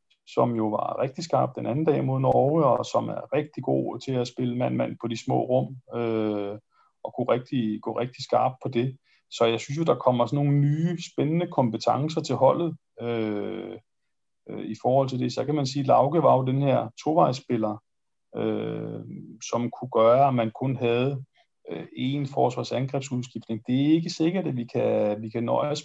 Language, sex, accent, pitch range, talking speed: Danish, male, native, 120-145 Hz, 195 wpm